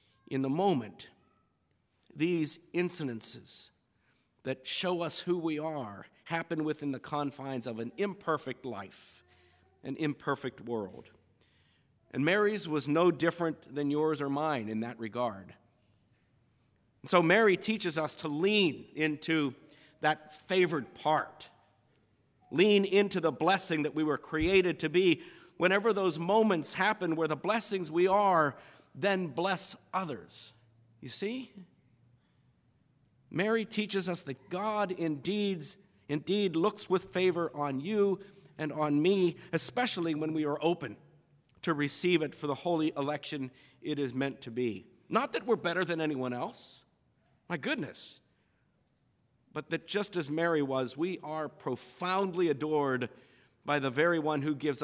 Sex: male